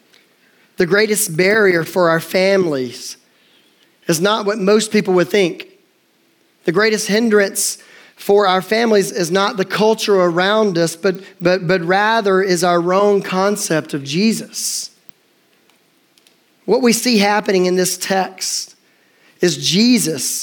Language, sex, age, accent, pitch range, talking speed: English, male, 40-59, American, 175-210 Hz, 130 wpm